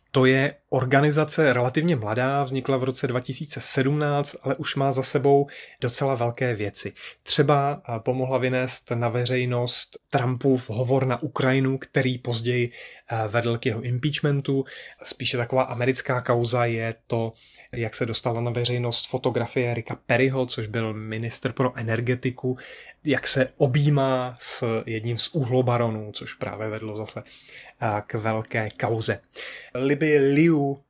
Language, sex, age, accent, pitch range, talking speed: Czech, male, 30-49, native, 115-135 Hz, 130 wpm